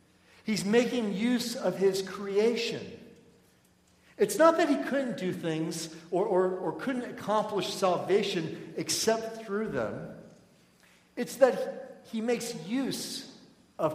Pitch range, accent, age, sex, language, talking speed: 160-215 Hz, American, 50-69, male, English, 115 wpm